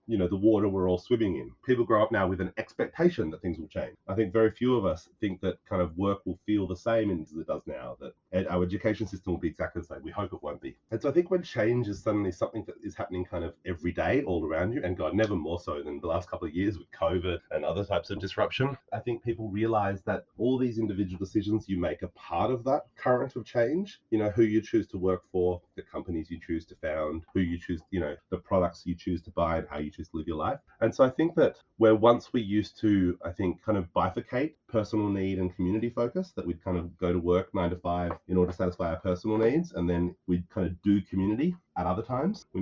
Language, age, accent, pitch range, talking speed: English, 30-49, Australian, 90-110 Hz, 265 wpm